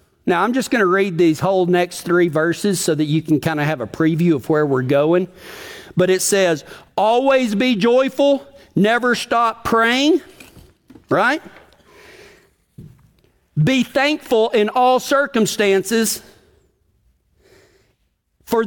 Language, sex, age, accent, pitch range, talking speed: English, male, 50-69, American, 205-270 Hz, 130 wpm